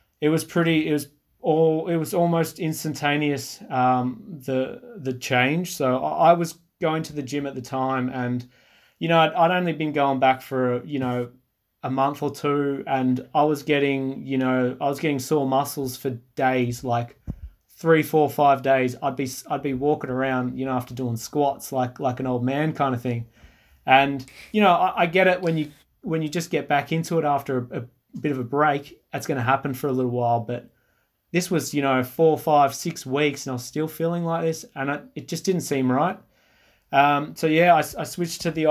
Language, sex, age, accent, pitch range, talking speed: English, male, 30-49, Australian, 130-155 Hz, 215 wpm